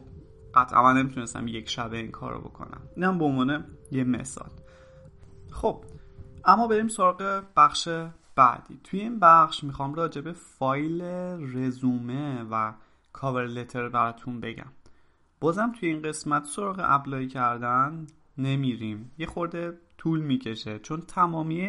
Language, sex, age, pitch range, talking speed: Persian, male, 30-49, 125-165 Hz, 125 wpm